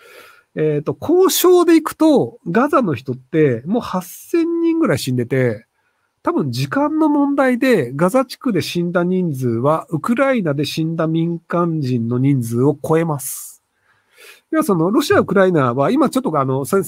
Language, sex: Japanese, male